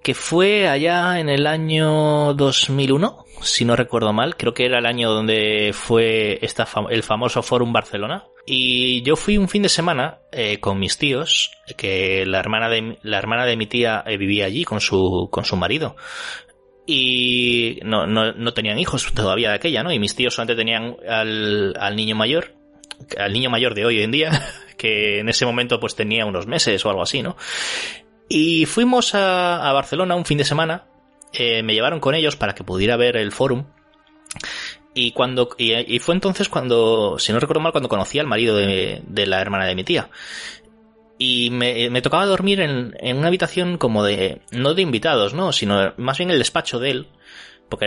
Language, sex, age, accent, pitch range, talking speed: Spanish, male, 20-39, Spanish, 110-155 Hz, 195 wpm